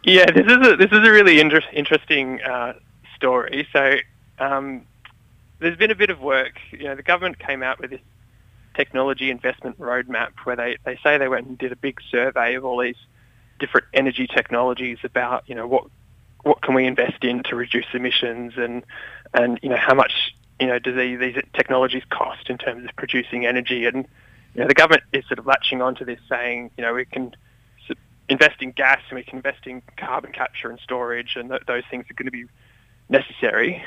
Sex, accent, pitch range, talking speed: male, Australian, 120-135 Hz, 200 wpm